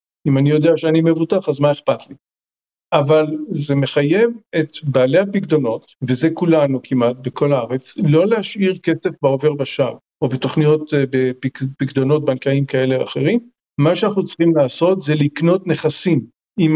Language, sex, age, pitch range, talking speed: Hebrew, male, 50-69, 145-190 Hz, 145 wpm